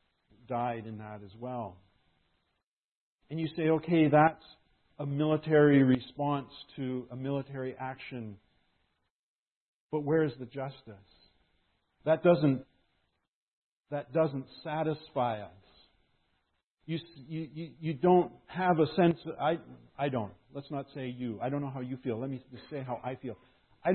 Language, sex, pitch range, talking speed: English, male, 125-150 Hz, 140 wpm